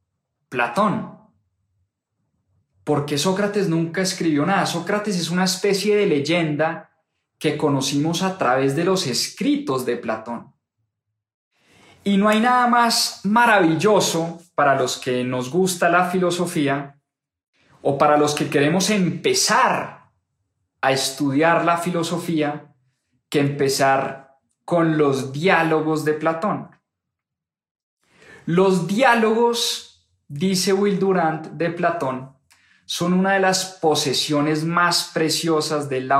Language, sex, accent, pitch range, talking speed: English, male, Colombian, 135-185 Hz, 110 wpm